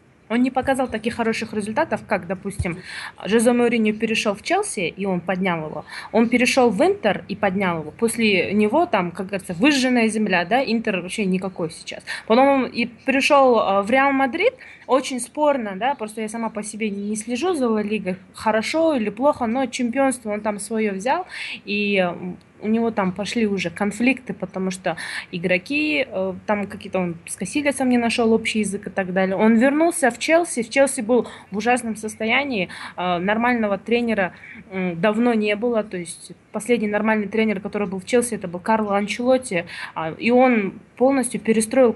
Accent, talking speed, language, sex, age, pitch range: native, 170 wpm, Russian, female, 20-39, 195-245 Hz